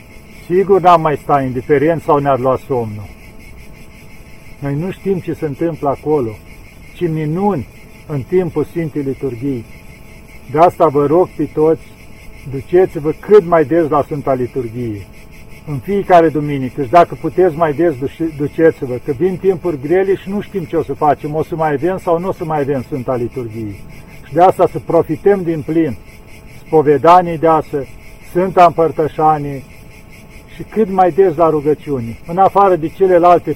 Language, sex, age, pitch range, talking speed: Romanian, male, 50-69, 140-175 Hz, 155 wpm